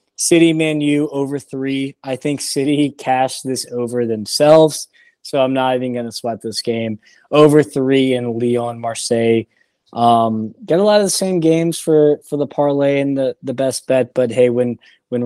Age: 20-39